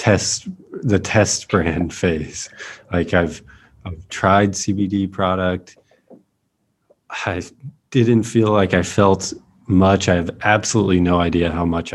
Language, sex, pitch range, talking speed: English, male, 85-100 Hz, 125 wpm